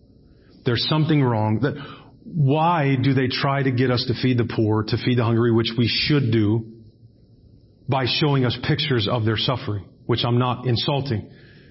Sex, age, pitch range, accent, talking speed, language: male, 40-59, 125-185 Hz, American, 175 wpm, English